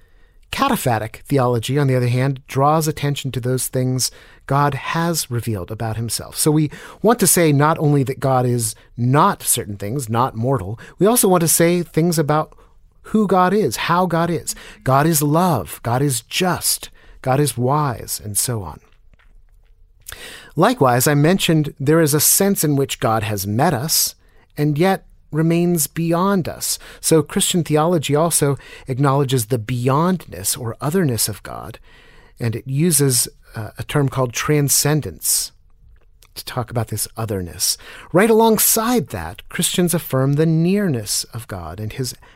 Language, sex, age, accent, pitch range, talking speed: English, male, 40-59, American, 120-165 Hz, 155 wpm